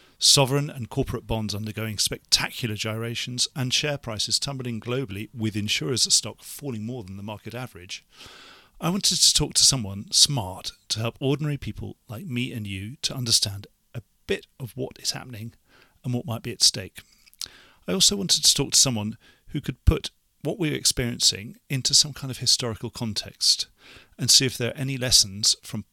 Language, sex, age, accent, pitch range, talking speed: English, male, 40-59, British, 100-130 Hz, 180 wpm